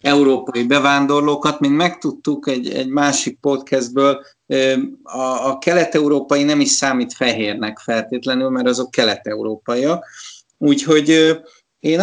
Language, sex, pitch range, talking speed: Hungarian, male, 125-155 Hz, 105 wpm